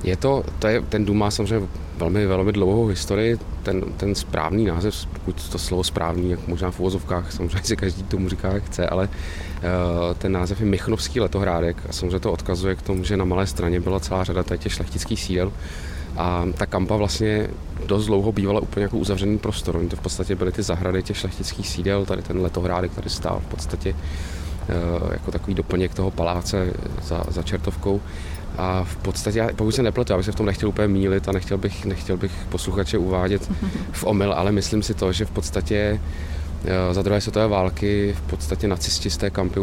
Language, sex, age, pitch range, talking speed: Czech, male, 30-49, 85-100 Hz, 200 wpm